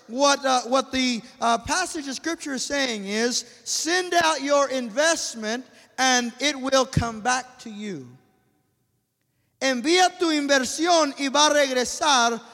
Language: English